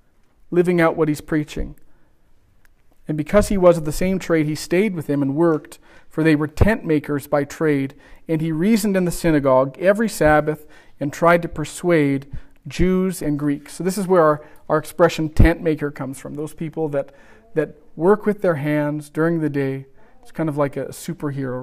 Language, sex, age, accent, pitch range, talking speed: English, male, 40-59, American, 140-165 Hz, 190 wpm